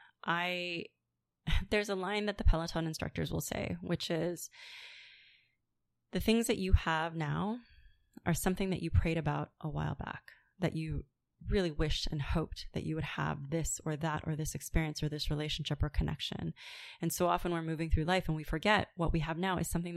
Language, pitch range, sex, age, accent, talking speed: English, 155-185 Hz, female, 20-39, American, 190 wpm